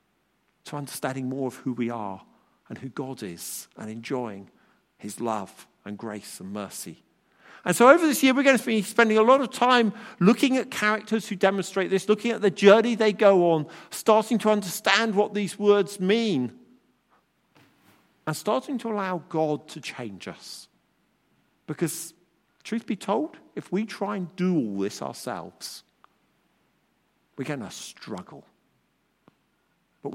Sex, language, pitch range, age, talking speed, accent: male, English, 175-235 Hz, 50-69, 155 wpm, British